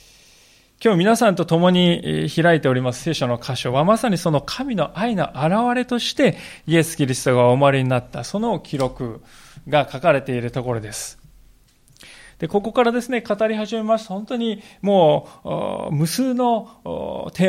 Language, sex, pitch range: Japanese, male, 125-210 Hz